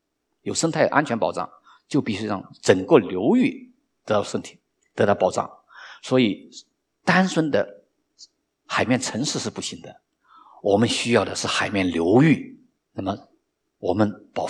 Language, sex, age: Chinese, male, 50-69